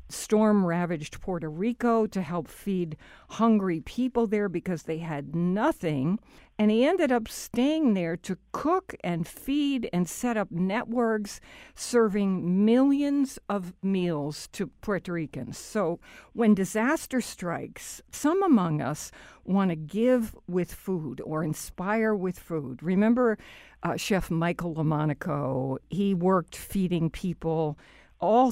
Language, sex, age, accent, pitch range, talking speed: English, female, 60-79, American, 170-225 Hz, 130 wpm